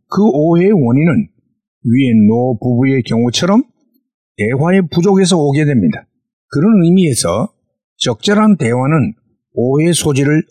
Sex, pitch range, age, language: male, 125-175 Hz, 50-69, Korean